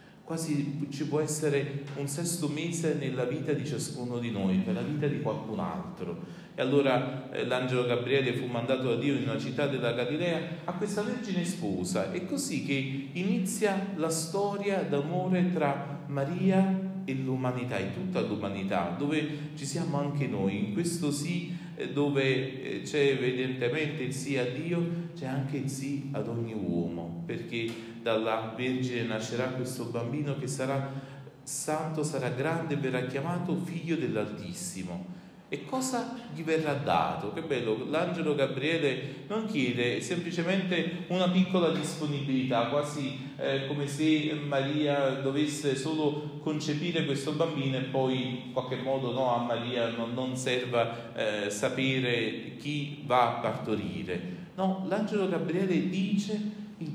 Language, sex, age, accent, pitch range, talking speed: Italian, male, 40-59, native, 125-165 Hz, 140 wpm